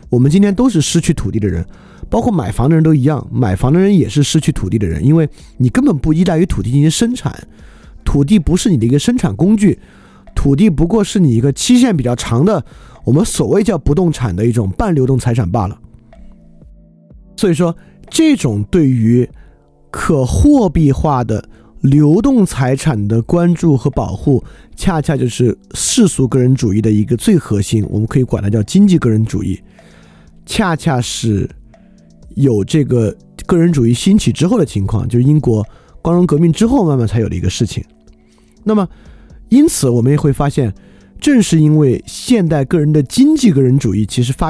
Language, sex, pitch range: Chinese, male, 115-170 Hz